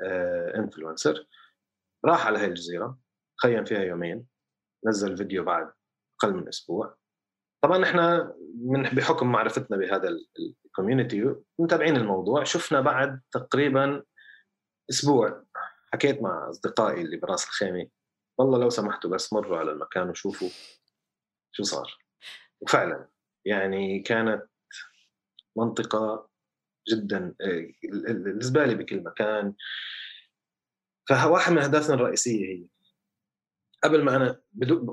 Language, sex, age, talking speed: Arabic, male, 30-49, 100 wpm